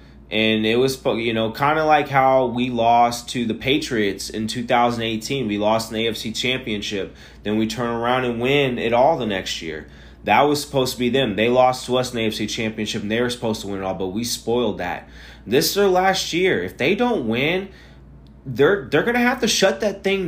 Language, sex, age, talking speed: English, male, 20-39, 230 wpm